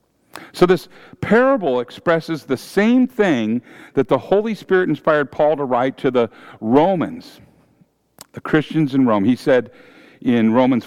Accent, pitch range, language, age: American, 135-180 Hz, English, 50-69